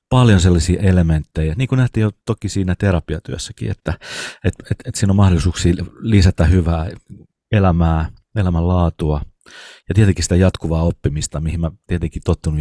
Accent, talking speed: native, 150 wpm